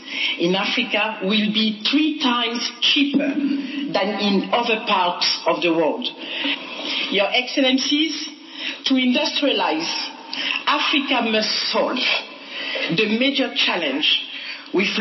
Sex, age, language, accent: female, 50-69, English, French